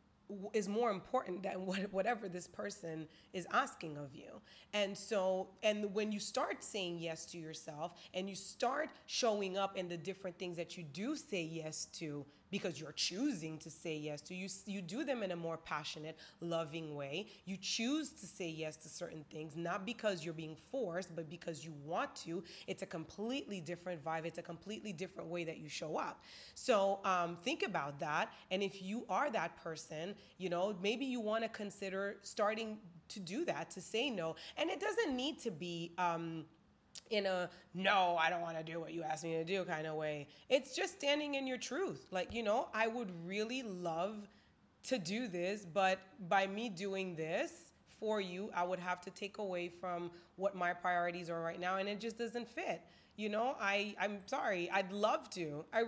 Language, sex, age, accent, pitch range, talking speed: English, female, 20-39, American, 170-215 Hz, 200 wpm